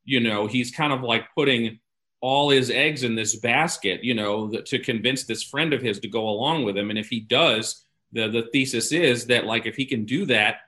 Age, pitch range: 40-59, 115-140 Hz